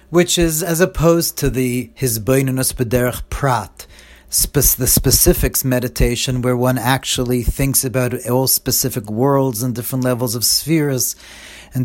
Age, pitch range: 40-59, 110-140 Hz